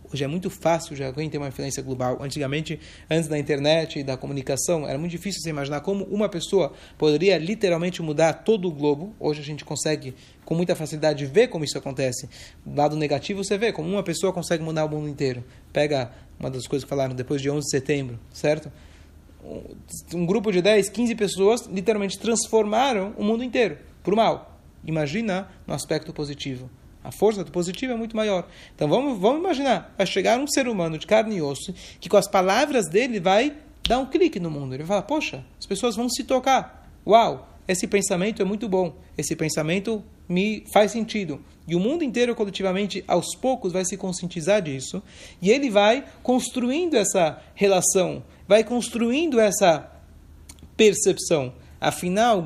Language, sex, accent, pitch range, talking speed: Portuguese, male, Brazilian, 150-210 Hz, 180 wpm